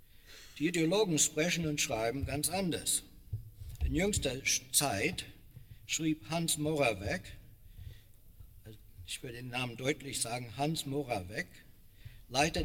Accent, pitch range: German, 115-145 Hz